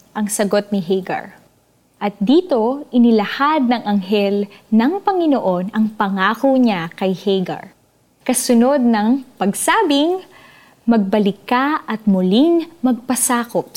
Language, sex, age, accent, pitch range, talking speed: Filipino, female, 20-39, native, 205-270 Hz, 105 wpm